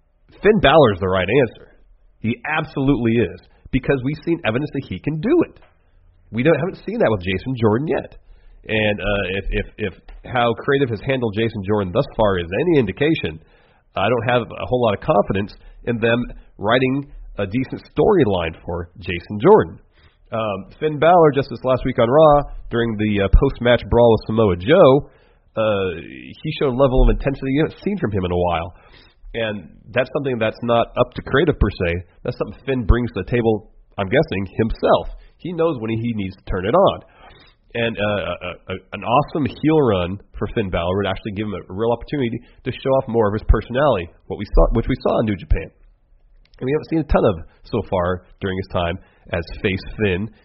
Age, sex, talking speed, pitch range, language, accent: 40-59, male, 200 wpm, 95-130 Hz, English, American